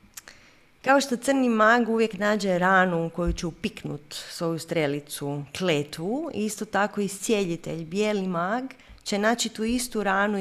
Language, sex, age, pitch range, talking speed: Croatian, female, 30-49, 170-220 Hz, 140 wpm